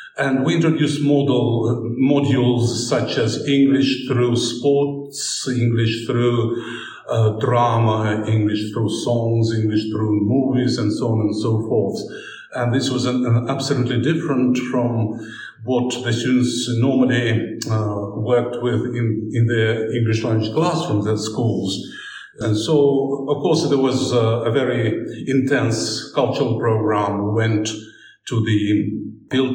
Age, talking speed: 50-69, 130 wpm